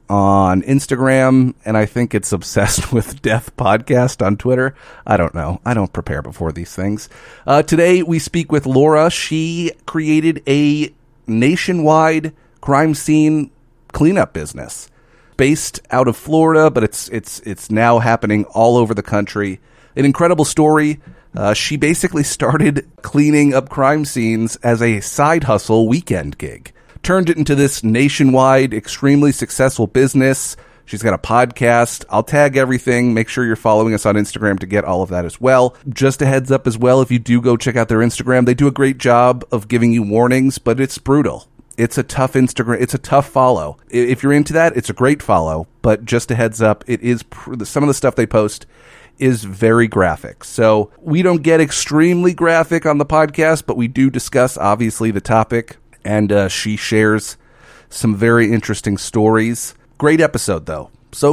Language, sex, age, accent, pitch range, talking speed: English, male, 40-59, American, 110-140 Hz, 180 wpm